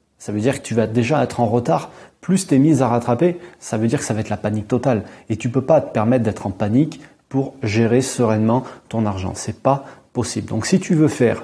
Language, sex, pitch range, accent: French, male, 110-130 Hz, French